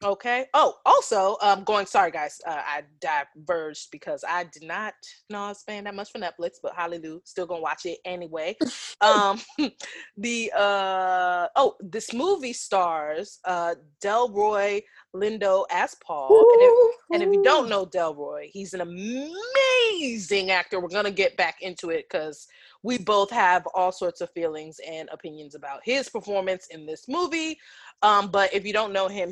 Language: English